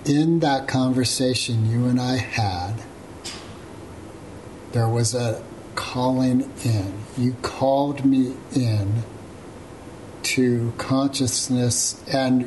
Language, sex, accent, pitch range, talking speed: English, male, American, 110-130 Hz, 90 wpm